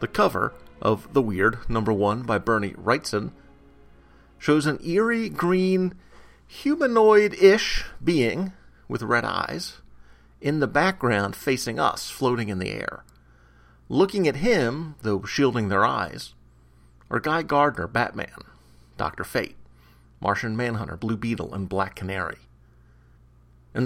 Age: 40-59